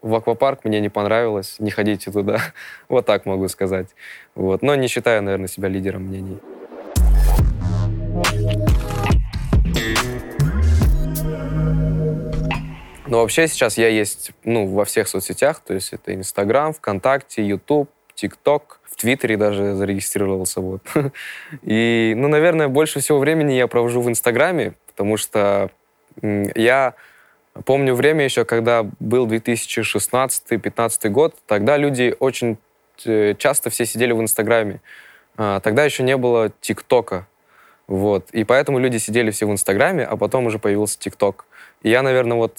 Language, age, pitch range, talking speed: Russian, 20-39, 100-130 Hz, 125 wpm